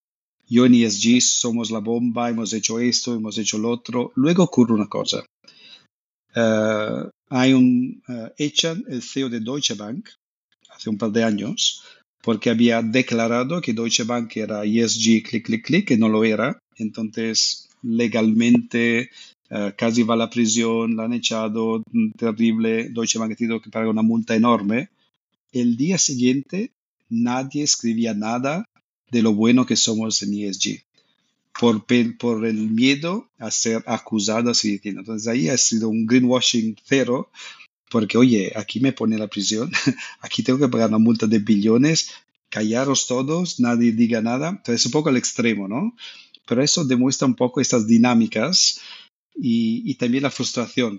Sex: male